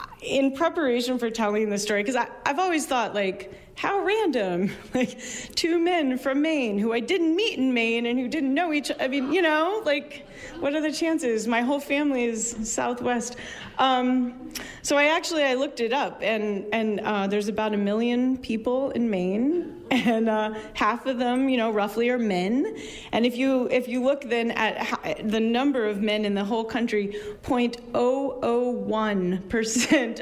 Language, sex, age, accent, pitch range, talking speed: English, female, 30-49, American, 220-280 Hz, 175 wpm